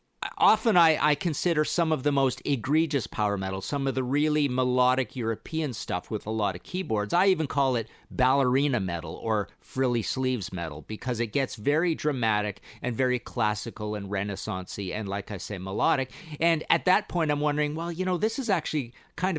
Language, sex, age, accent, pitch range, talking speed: English, male, 50-69, American, 110-160 Hz, 190 wpm